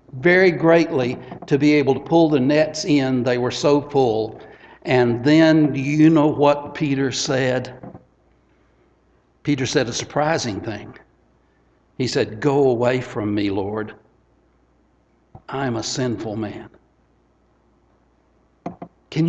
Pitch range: 125-185 Hz